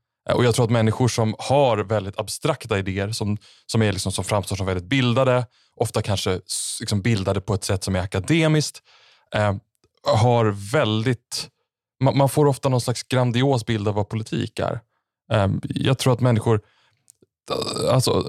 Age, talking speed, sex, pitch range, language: 20-39, 165 wpm, male, 100-125 Hz, Swedish